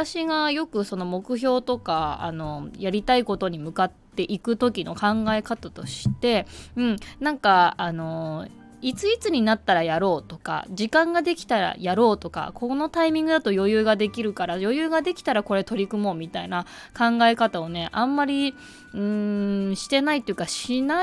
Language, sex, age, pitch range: Japanese, female, 20-39, 185-275 Hz